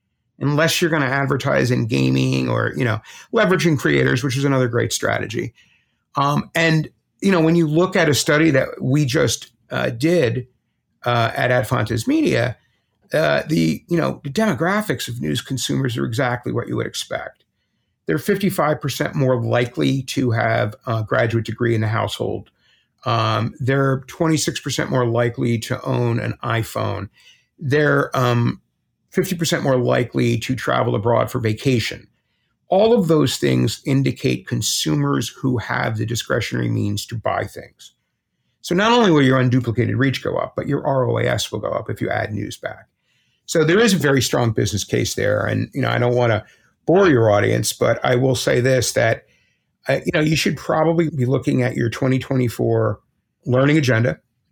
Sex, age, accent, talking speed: male, 50-69, American, 165 wpm